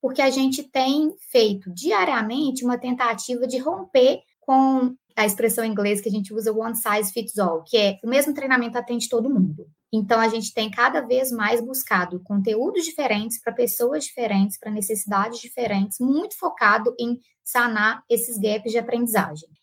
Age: 20-39